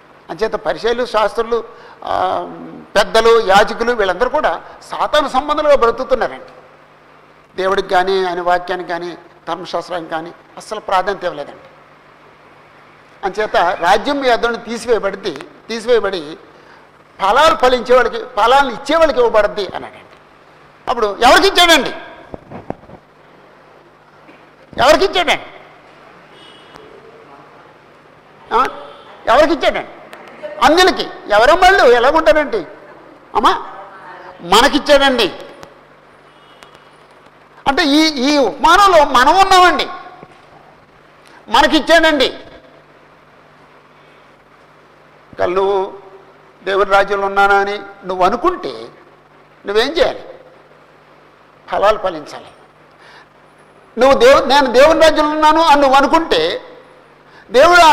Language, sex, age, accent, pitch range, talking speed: Telugu, male, 60-79, native, 200-315 Hz, 75 wpm